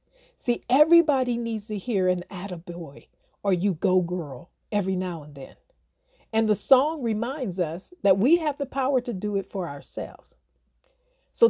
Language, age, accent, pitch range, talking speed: English, 50-69, American, 185-270 Hz, 160 wpm